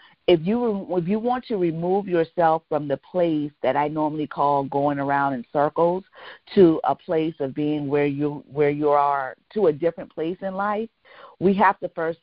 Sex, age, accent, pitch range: female, 50-69, American, 145-175 Hz